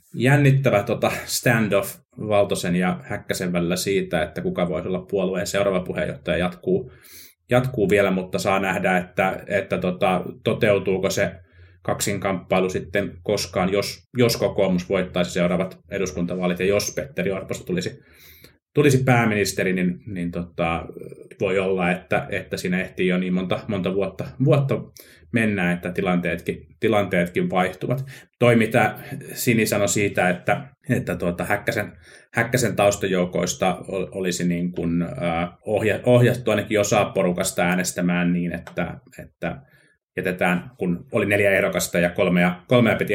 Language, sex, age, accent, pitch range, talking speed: Finnish, male, 30-49, native, 90-105 Hz, 130 wpm